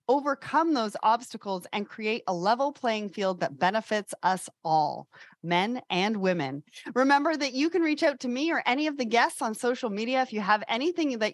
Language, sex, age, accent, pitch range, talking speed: English, female, 30-49, American, 195-270 Hz, 195 wpm